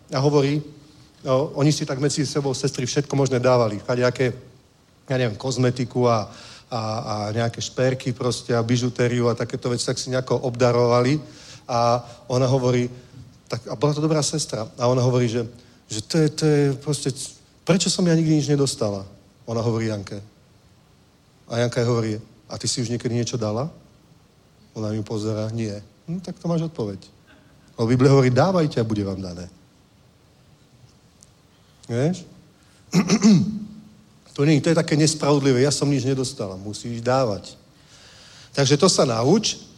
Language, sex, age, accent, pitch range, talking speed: Czech, male, 40-59, native, 115-145 Hz, 160 wpm